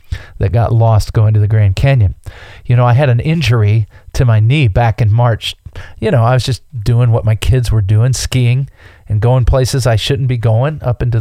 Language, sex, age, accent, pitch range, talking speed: English, male, 40-59, American, 105-130 Hz, 220 wpm